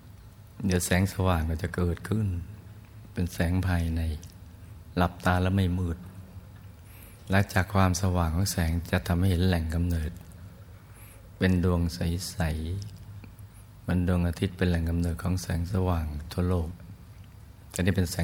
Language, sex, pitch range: Thai, male, 85-95 Hz